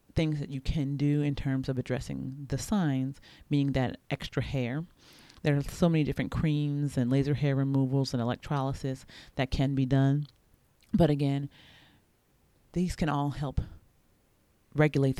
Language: English